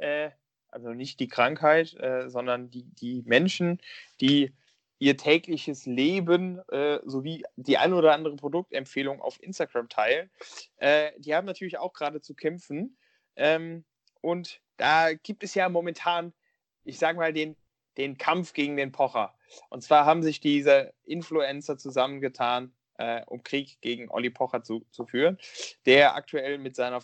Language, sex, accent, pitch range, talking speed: German, male, German, 130-165 Hz, 150 wpm